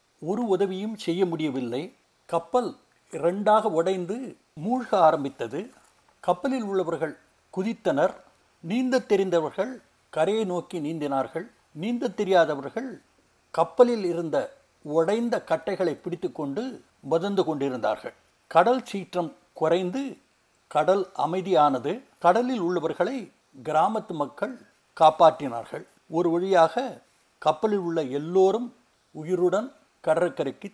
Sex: male